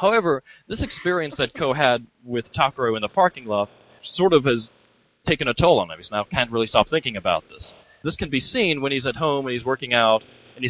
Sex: male